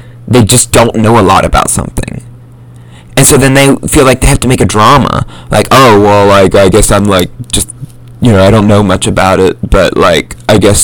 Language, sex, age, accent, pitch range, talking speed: English, male, 20-39, American, 100-125 Hz, 225 wpm